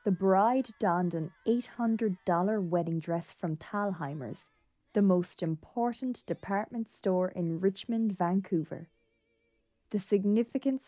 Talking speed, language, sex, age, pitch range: 105 wpm, English, female, 20-39, 170-230 Hz